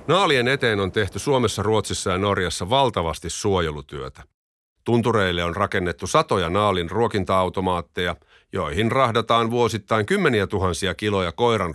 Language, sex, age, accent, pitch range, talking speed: Finnish, male, 50-69, native, 90-115 Hz, 110 wpm